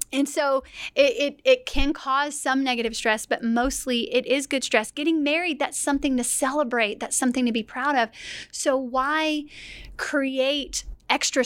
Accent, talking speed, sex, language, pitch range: American, 170 wpm, female, English, 225-275 Hz